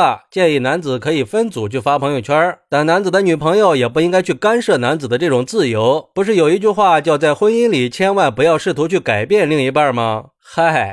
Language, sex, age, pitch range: Chinese, male, 20-39, 135-195 Hz